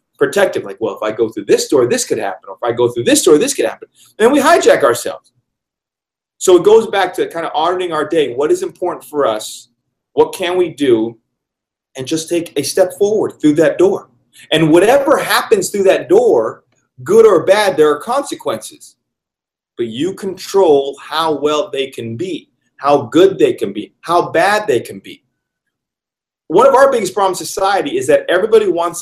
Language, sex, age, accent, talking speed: English, male, 30-49, American, 195 wpm